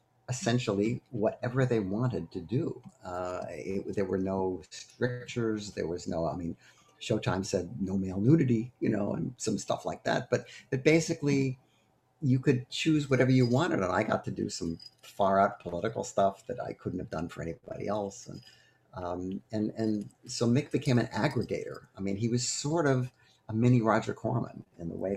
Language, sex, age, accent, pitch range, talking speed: English, male, 50-69, American, 100-125 Hz, 185 wpm